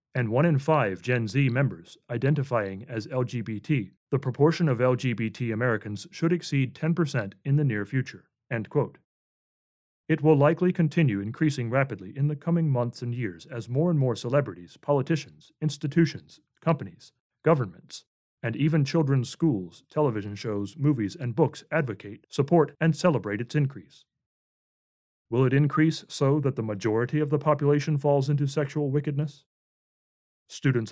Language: English